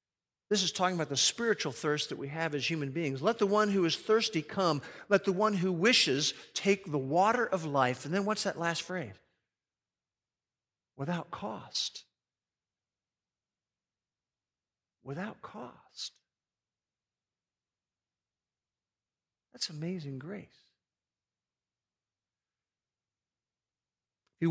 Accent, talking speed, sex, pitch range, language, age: American, 110 wpm, male, 135-170 Hz, English, 50-69